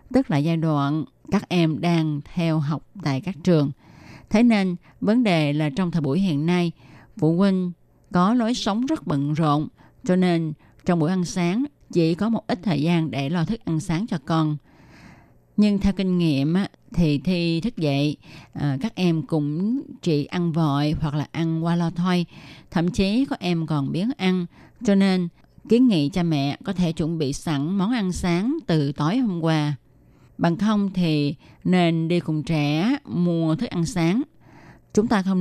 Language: Vietnamese